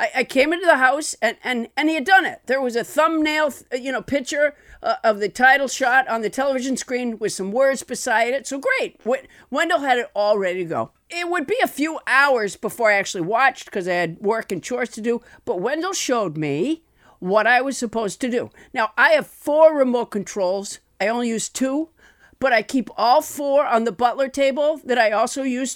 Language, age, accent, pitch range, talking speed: English, 50-69, American, 225-295 Hz, 215 wpm